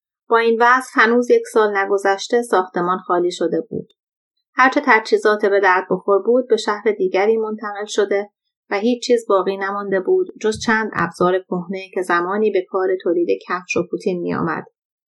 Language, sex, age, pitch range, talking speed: Persian, female, 30-49, 180-225 Hz, 170 wpm